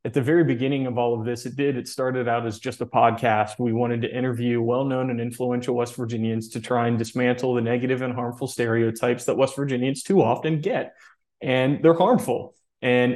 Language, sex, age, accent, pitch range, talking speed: English, male, 20-39, American, 120-130 Hz, 205 wpm